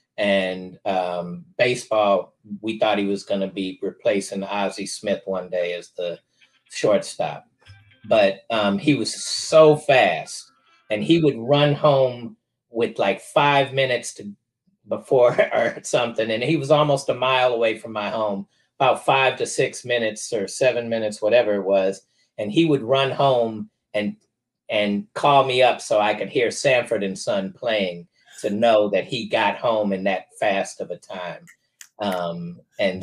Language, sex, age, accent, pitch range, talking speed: English, male, 30-49, American, 100-130 Hz, 160 wpm